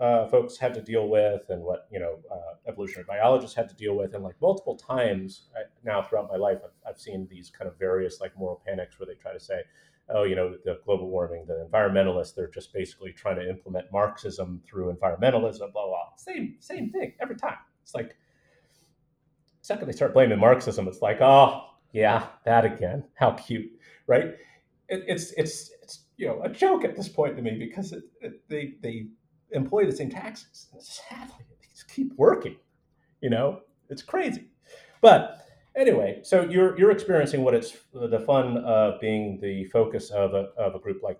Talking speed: 185 wpm